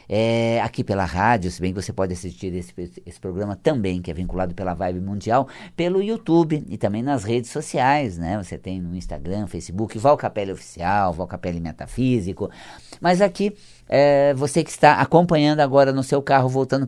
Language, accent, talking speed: Portuguese, Brazilian, 180 wpm